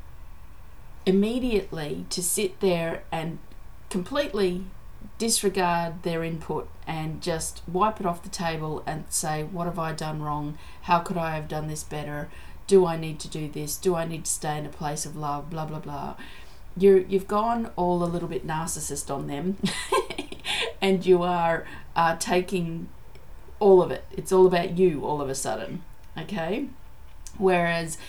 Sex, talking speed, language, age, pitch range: female, 165 wpm, English, 30-49, 155-190 Hz